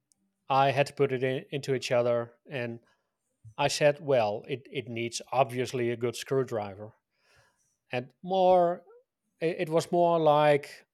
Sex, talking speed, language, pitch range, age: male, 150 wpm, English, 125-150 Hz, 30-49